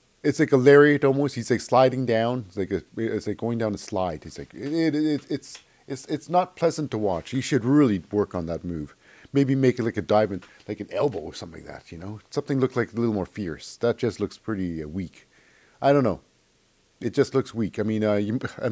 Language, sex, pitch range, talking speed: English, male, 105-140 Hz, 250 wpm